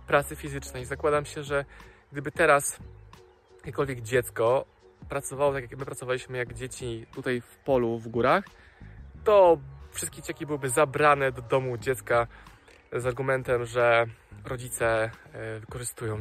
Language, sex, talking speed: Polish, male, 125 wpm